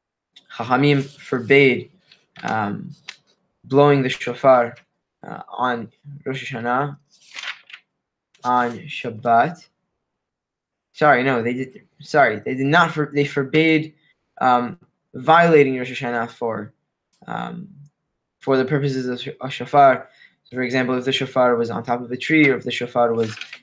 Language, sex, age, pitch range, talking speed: English, male, 10-29, 130-155 Hz, 135 wpm